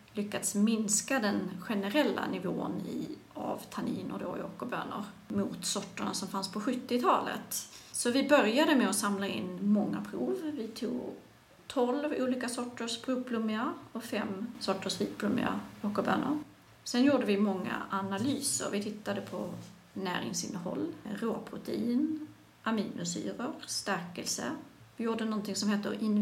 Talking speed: 130 wpm